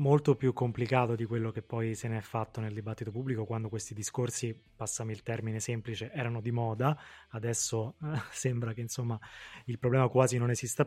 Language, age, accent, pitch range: Italian, 20-39, native, 115-130 Hz